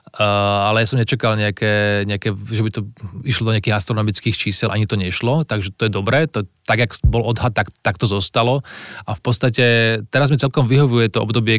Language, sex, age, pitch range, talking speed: Slovak, male, 20-39, 110-125 Hz, 195 wpm